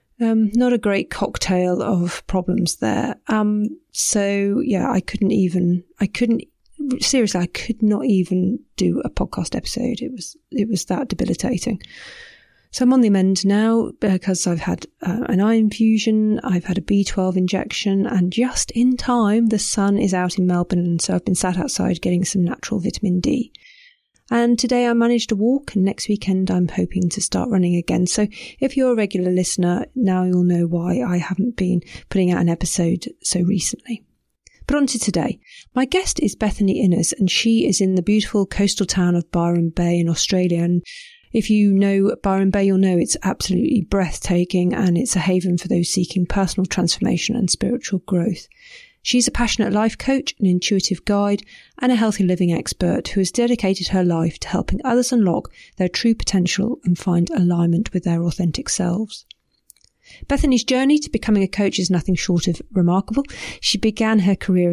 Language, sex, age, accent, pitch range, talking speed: English, female, 30-49, British, 180-225 Hz, 180 wpm